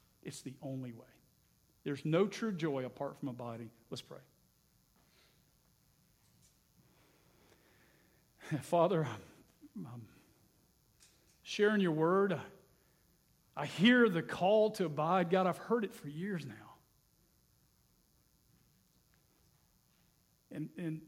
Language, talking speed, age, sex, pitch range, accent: English, 100 wpm, 50-69, male, 140-185 Hz, American